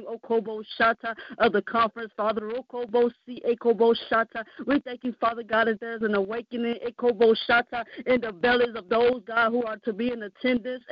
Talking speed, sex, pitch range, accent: 180 wpm, female, 235-275 Hz, American